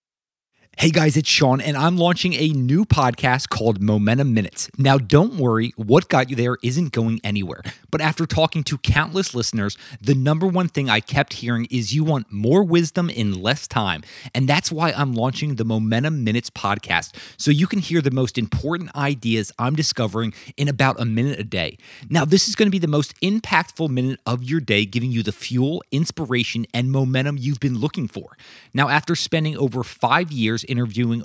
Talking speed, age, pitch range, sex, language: 190 wpm, 30-49, 110-150 Hz, male, English